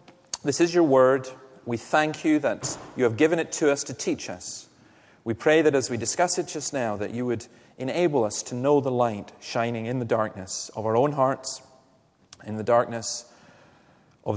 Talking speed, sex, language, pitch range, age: 195 wpm, male, English, 105-135 Hz, 30-49